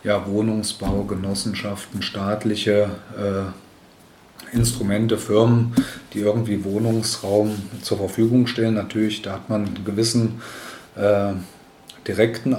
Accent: German